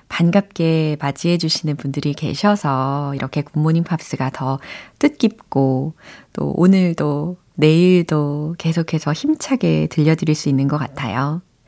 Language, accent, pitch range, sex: Korean, native, 155-250 Hz, female